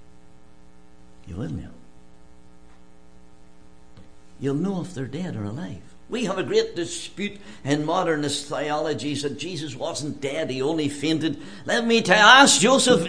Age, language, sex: 60-79, English, male